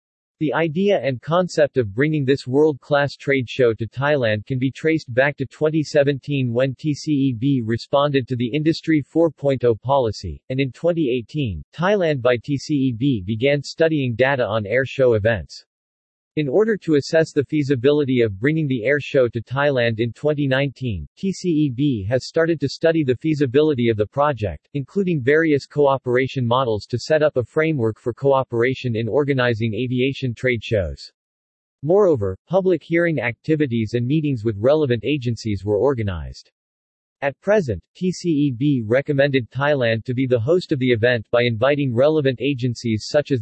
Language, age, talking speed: English, 40-59, 150 wpm